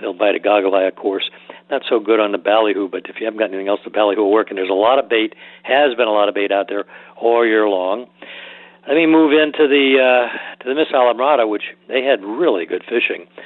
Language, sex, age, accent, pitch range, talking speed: English, male, 60-79, American, 105-120 Hz, 255 wpm